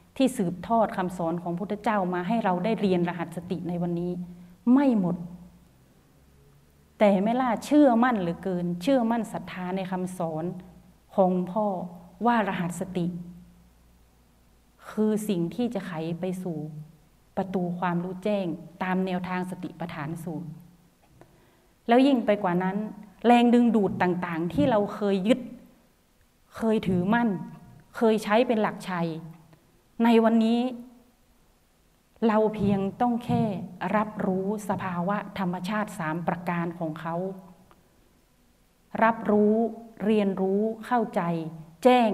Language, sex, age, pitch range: Thai, female, 30-49, 175-215 Hz